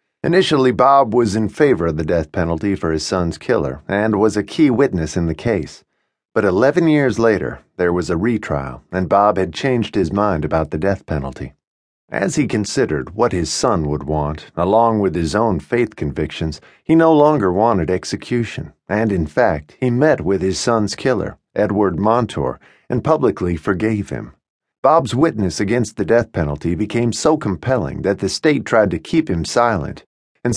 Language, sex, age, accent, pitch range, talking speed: English, male, 50-69, American, 80-120 Hz, 180 wpm